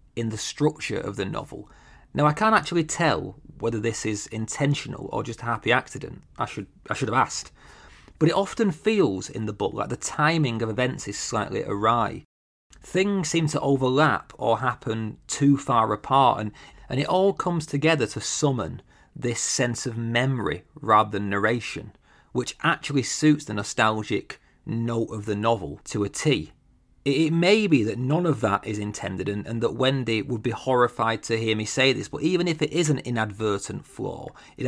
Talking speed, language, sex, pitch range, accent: 185 wpm, English, male, 110-150 Hz, British